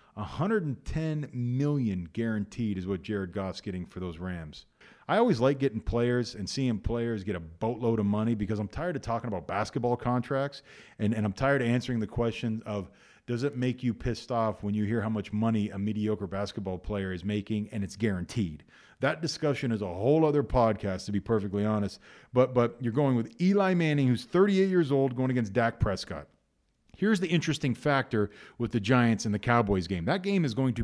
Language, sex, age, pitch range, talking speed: English, male, 40-59, 105-140 Hz, 200 wpm